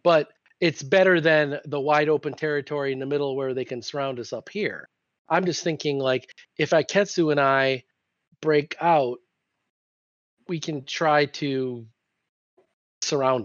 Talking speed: 145 wpm